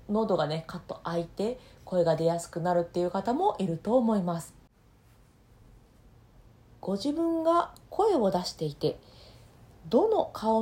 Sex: female